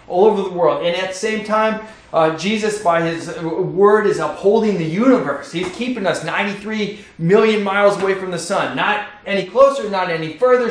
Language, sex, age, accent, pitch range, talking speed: English, male, 30-49, American, 165-230 Hz, 190 wpm